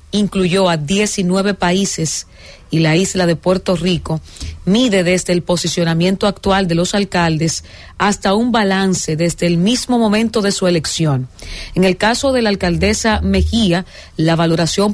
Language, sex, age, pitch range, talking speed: English, female, 40-59, 160-195 Hz, 150 wpm